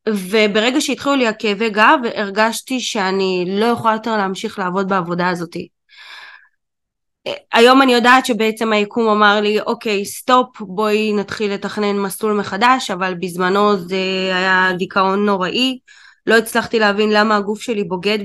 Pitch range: 195-245 Hz